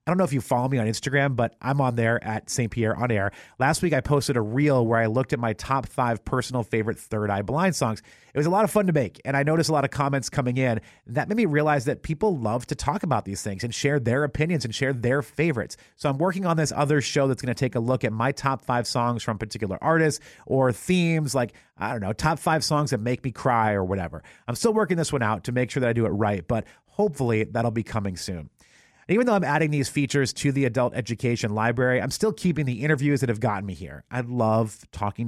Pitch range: 110-145 Hz